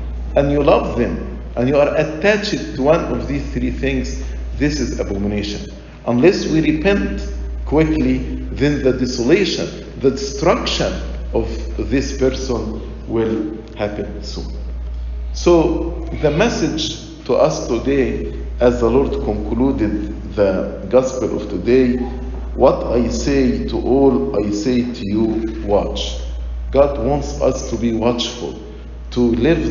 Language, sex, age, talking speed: English, male, 50-69, 130 wpm